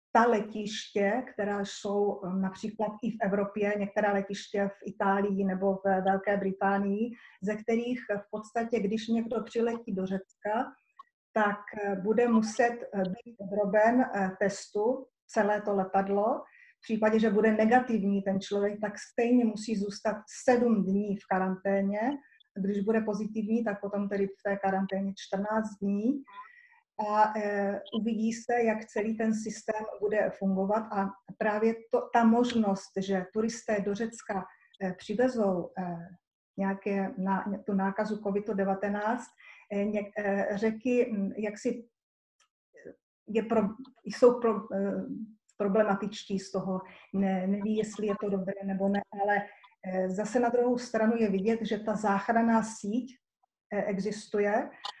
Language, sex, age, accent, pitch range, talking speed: Czech, female, 30-49, native, 200-225 Hz, 115 wpm